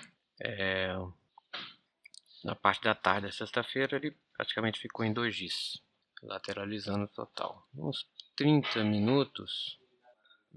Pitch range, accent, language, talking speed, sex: 100-120 Hz, Brazilian, Portuguese, 115 wpm, male